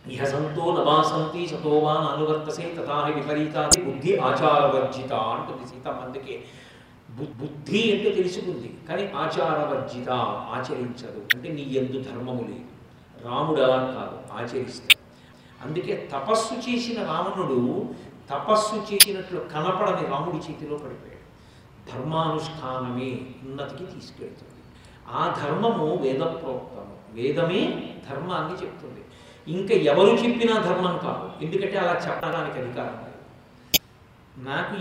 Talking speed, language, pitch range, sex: 90 wpm, Telugu, 145-200 Hz, male